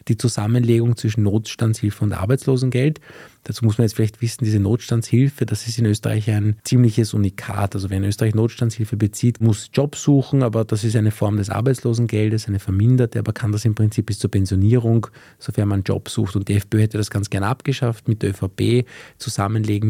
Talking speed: 185 wpm